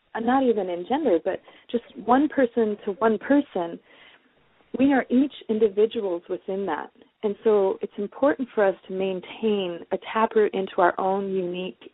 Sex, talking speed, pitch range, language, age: female, 155 wpm, 190-235 Hz, English, 30-49